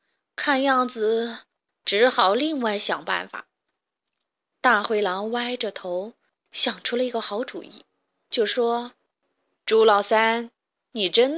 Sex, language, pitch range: female, Chinese, 215-300 Hz